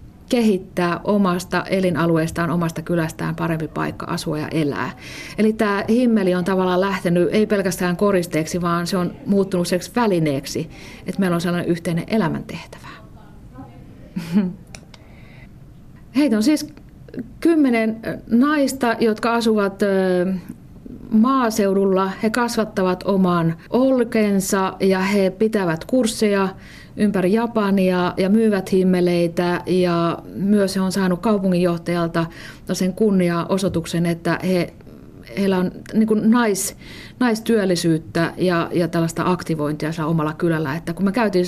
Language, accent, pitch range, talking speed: Finnish, native, 170-205 Hz, 110 wpm